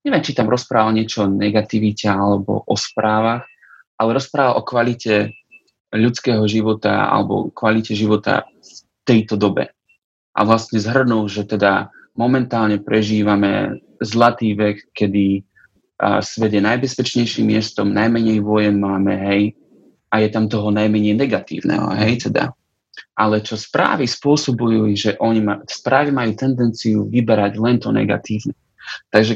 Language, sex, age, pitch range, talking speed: Slovak, male, 30-49, 105-115 Hz, 125 wpm